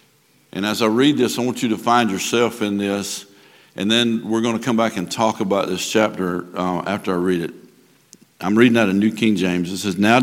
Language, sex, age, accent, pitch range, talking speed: English, male, 60-79, American, 95-120 Hz, 235 wpm